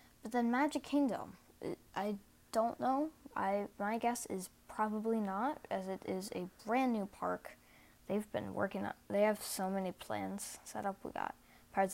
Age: 20-39